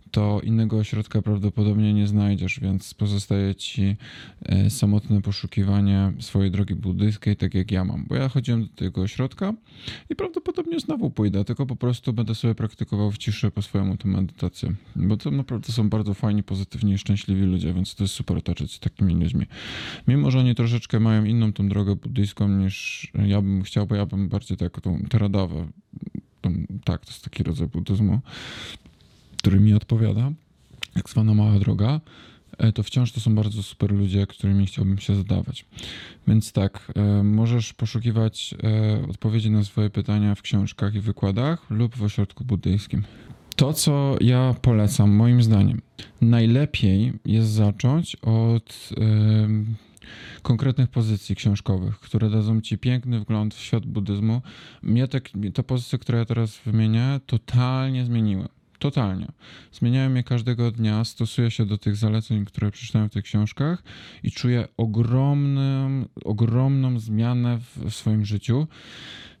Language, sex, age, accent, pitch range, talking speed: Polish, male, 20-39, native, 100-120 Hz, 150 wpm